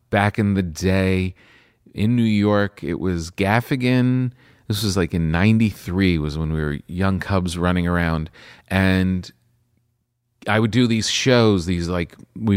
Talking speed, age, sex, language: 155 wpm, 40-59, male, English